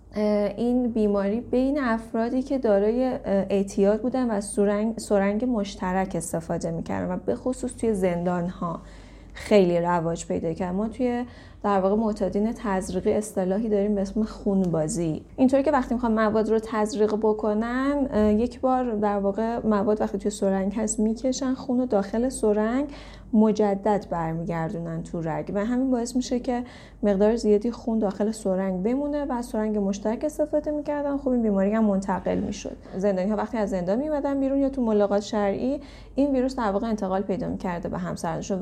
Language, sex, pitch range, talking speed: Persian, female, 195-235 Hz, 160 wpm